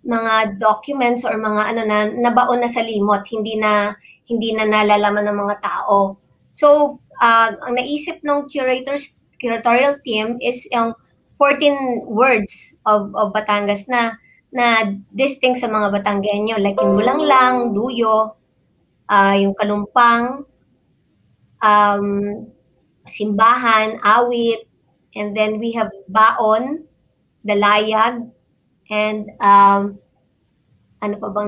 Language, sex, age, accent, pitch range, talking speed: English, male, 20-39, Filipino, 210-255 Hz, 115 wpm